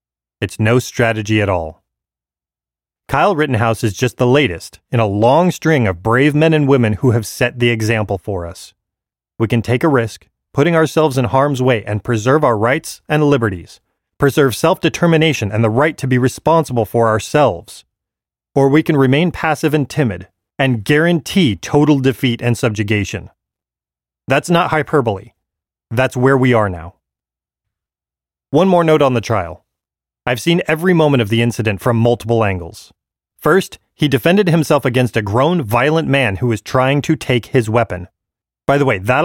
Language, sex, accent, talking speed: English, male, American, 170 wpm